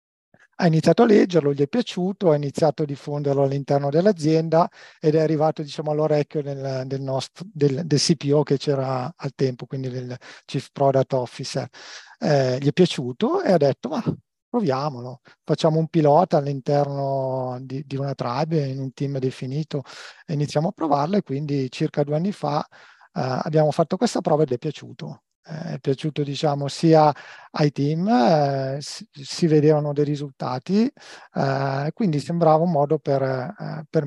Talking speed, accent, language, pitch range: 155 wpm, native, Italian, 135-160 Hz